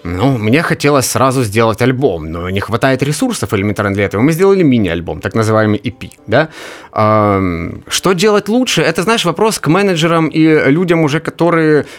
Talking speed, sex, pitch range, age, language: 160 wpm, male, 120-180 Hz, 30-49, Ukrainian